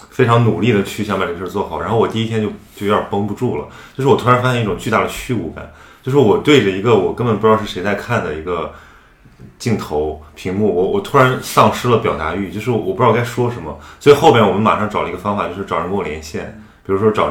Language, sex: Chinese, male